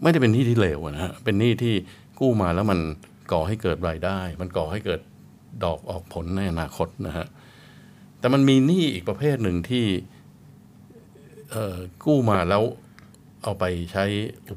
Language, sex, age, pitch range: Thai, male, 60-79, 90-115 Hz